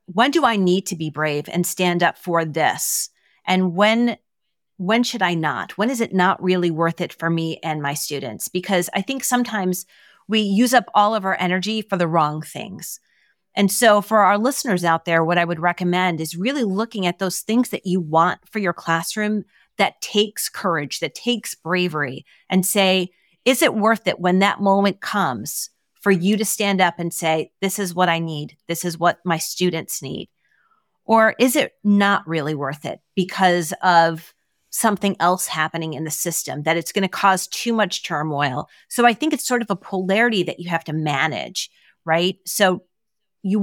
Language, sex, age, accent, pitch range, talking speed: English, female, 30-49, American, 165-210 Hz, 195 wpm